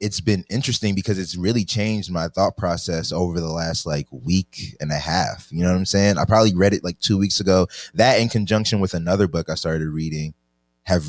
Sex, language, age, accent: male, English, 20-39, American